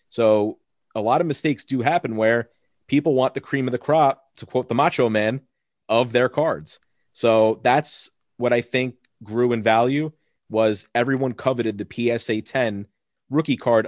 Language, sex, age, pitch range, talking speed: English, male, 30-49, 110-130 Hz, 170 wpm